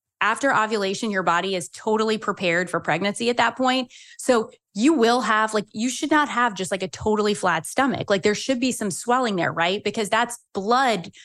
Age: 20-39